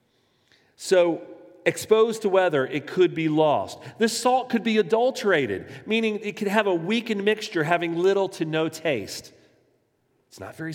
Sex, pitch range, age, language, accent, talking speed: male, 130-180 Hz, 40-59, English, American, 155 wpm